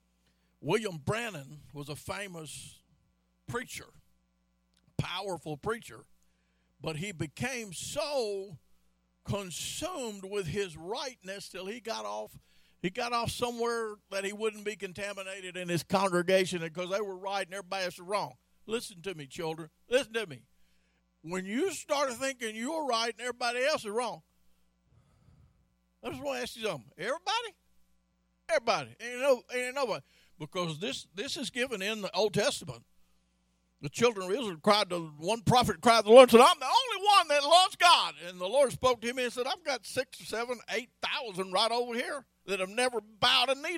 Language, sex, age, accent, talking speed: English, male, 50-69, American, 170 wpm